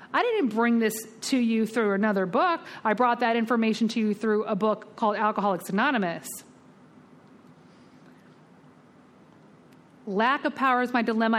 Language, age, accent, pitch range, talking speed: English, 40-59, American, 215-270 Hz, 140 wpm